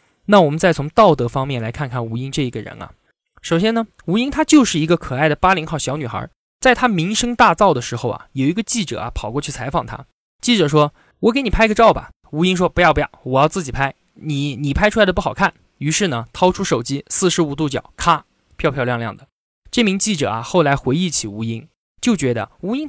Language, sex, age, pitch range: Chinese, male, 20-39, 140-215 Hz